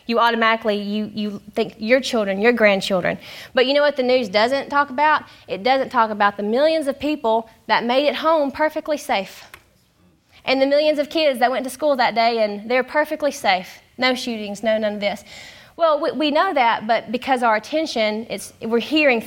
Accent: American